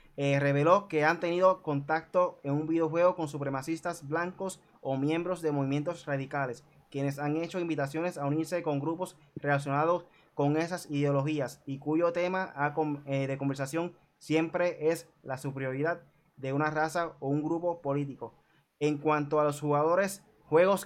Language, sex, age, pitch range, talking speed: Spanish, male, 20-39, 140-165 Hz, 150 wpm